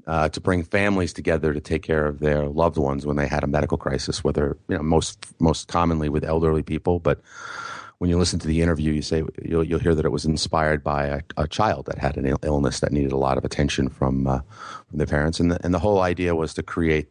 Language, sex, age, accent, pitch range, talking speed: English, male, 30-49, American, 70-85 Hz, 255 wpm